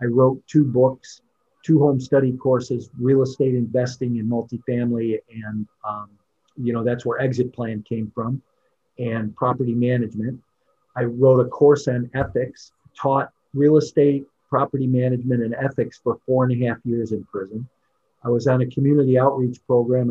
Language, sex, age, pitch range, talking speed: English, male, 50-69, 115-130 Hz, 160 wpm